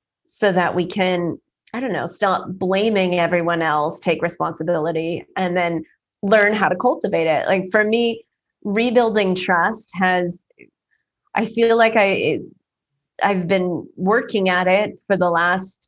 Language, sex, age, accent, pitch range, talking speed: English, female, 20-39, American, 180-215 Hz, 145 wpm